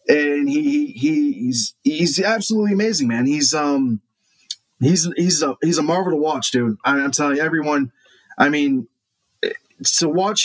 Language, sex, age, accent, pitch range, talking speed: English, male, 20-39, American, 135-190 Hz, 165 wpm